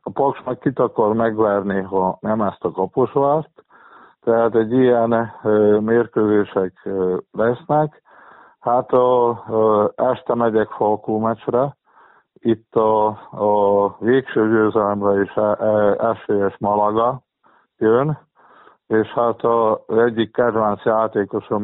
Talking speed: 115 wpm